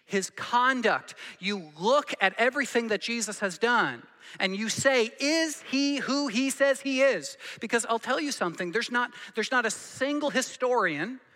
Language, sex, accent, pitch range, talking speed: English, male, American, 160-225 Hz, 170 wpm